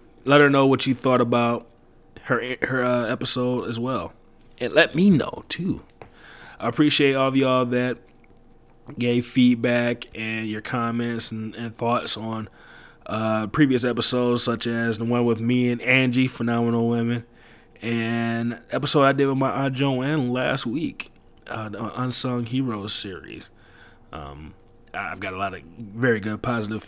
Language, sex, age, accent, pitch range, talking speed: English, male, 20-39, American, 110-125 Hz, 155 wpm